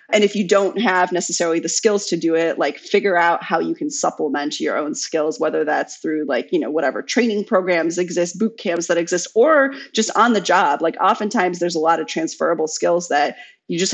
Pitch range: 165-215 Hz